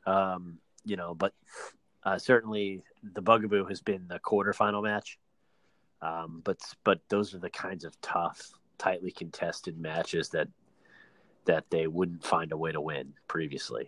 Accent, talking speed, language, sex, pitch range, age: American, 150 wpm, English, male, 90-110 Hz, 30-49